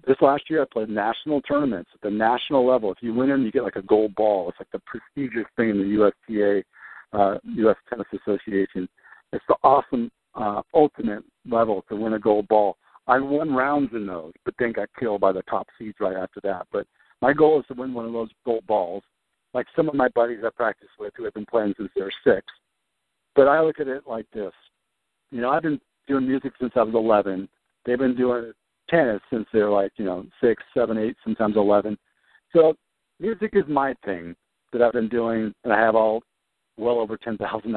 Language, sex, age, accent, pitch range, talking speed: English, male, 60-79, American, 105-135 Hz, 215 wpm